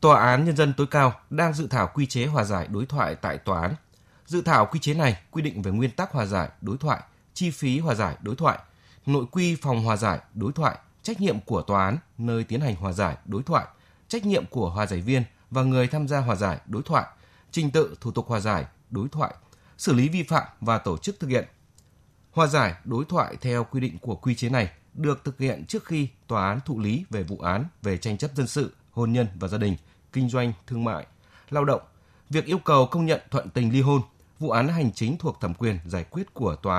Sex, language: male, Vietnamese